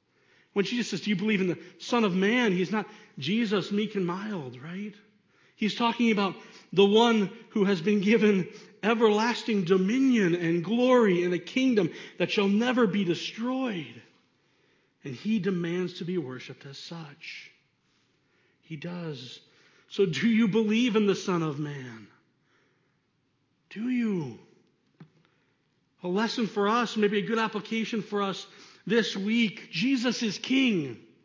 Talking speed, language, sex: 145 wpm, English, male